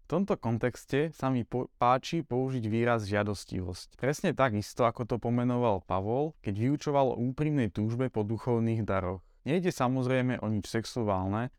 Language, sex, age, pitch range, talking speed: Slovak, male, 20-39, 115-140 Hz, 150 wpm